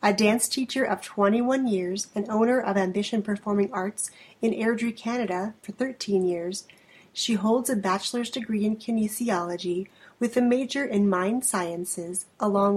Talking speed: 150 wpm